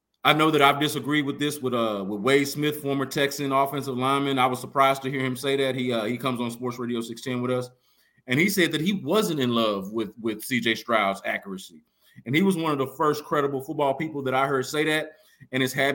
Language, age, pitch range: English, 30-49, 120-150 Hz